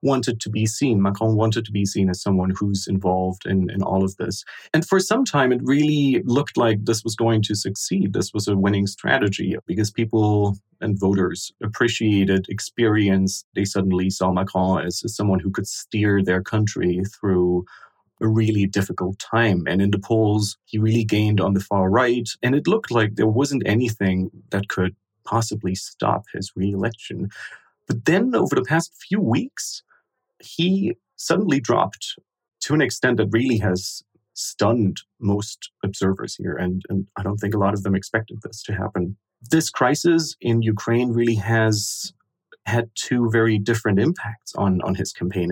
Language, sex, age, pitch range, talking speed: English, male, 30-49, 95-115 Hz, 175 wpm